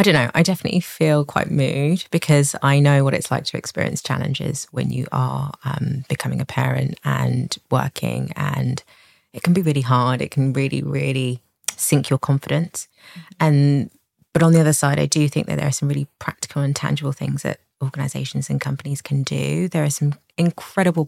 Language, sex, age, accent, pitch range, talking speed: English, female, 20-39, British, 140-155 Hz, 190 wpm